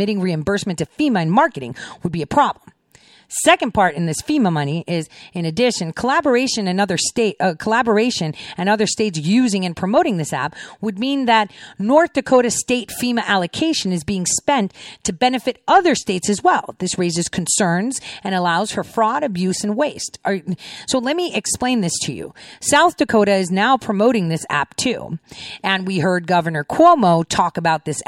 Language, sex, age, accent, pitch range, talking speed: English, female, 40-59, American, 170-245 Hz, 165 wpm